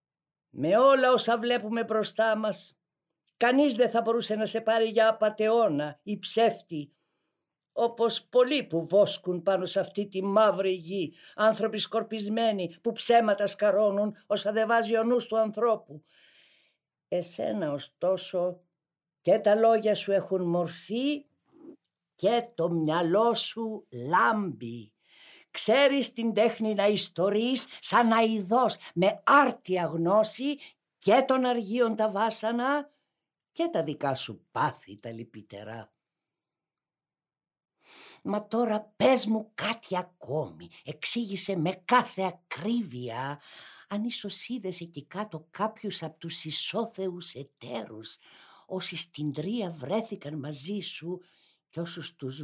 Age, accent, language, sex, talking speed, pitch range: 50-69, Spanish, Greek, female, 115 wpm, 165-225 Hz